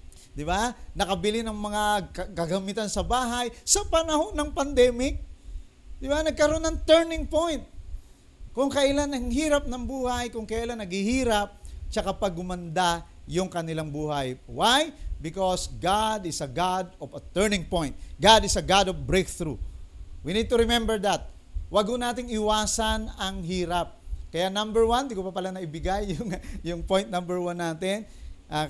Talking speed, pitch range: 155 wpm, 165-210 Hz